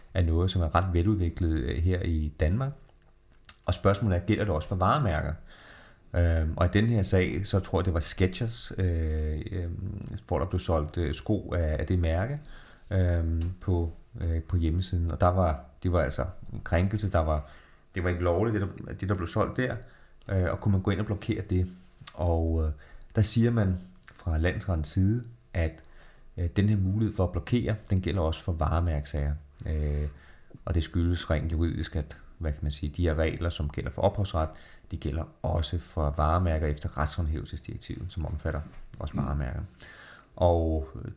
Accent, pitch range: native, 80-95 Hz